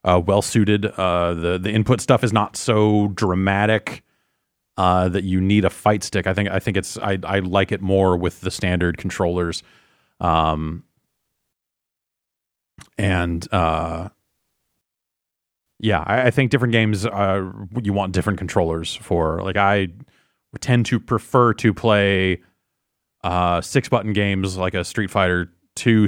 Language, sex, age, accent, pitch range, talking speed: English, male, 30-49, American, 90-110 Hz, 145 wpm